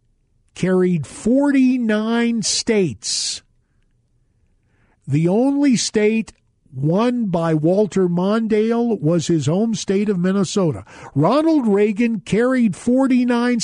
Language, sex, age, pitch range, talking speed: English, male, 50-69, 145-225 Hz, 95 wpm